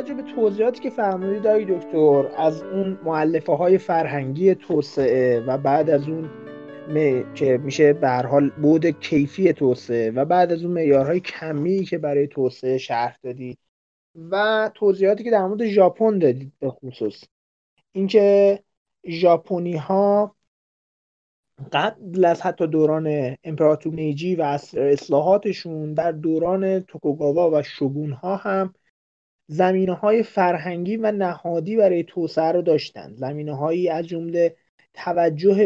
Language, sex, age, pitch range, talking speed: Persian, male, 30-49, 155-190 Hz, 125 wpm